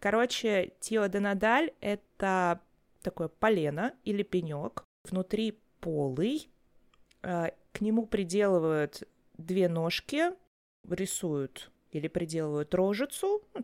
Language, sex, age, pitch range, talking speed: Russian, female, 20-39, 175-225 Hz, 85 wpm